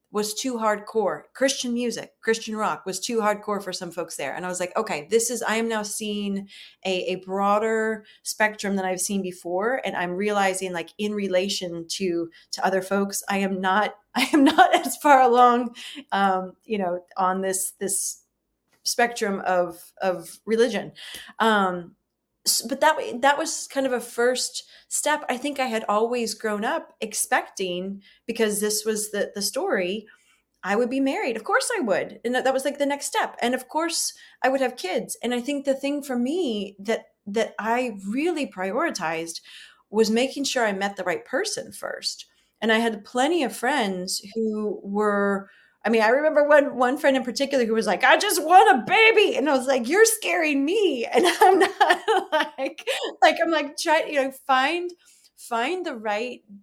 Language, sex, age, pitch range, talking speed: English, female, 30-49, 200-275 Hz, 185 wpm